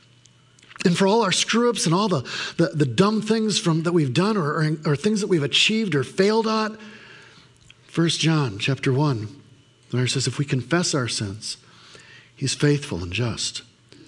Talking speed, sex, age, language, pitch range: 180 wpm, male, 50-69, English, 130-170 Hz